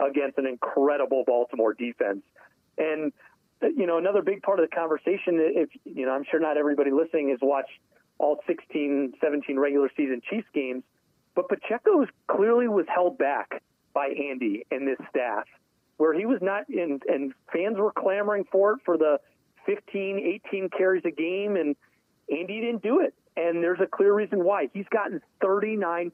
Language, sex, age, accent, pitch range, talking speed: English, male, 40-59, American, 150-200 Hz, 170 wpm